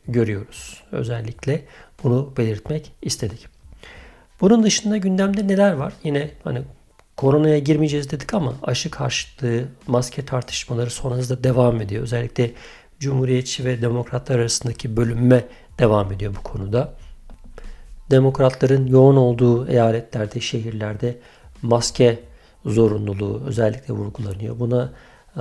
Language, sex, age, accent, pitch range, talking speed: Turkish, male, 50-69, native, 115-135 Hz, 100 wpm